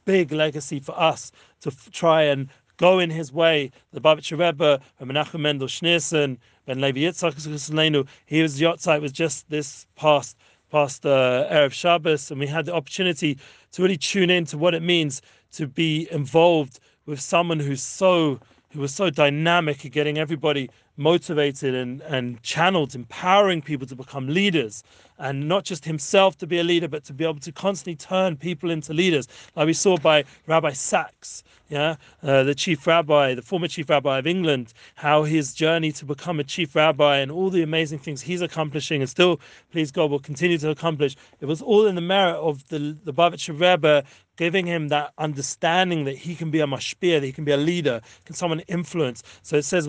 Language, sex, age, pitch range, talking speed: English, male, 40-59, 140-170 Hz, 190 wpm